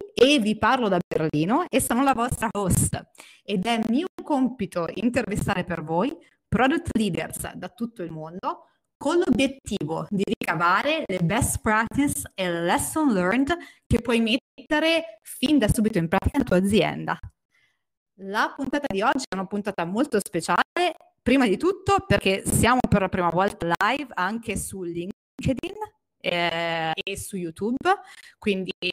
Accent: native